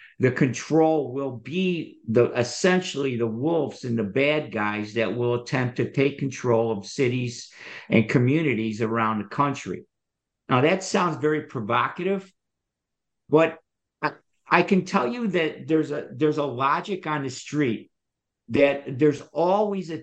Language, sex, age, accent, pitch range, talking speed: English, male, 50-69, American, 125-165 Hz, 145 wpm